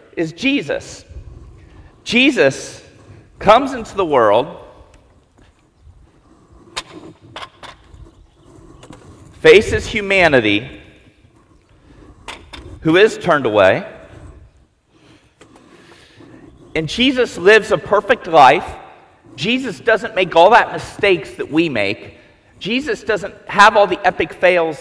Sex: male